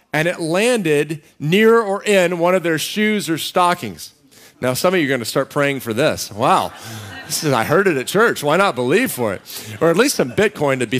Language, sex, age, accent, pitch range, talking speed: English, male, 40-59, American, 120-160 Hz, 230 wpm